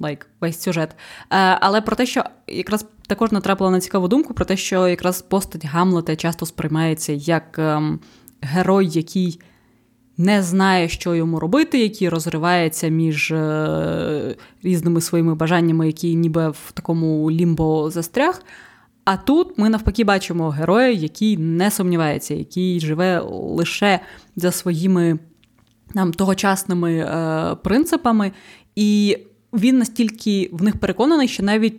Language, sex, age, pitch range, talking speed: Ukrainian, female, 20-39, 160-195 Hz, 130 wpm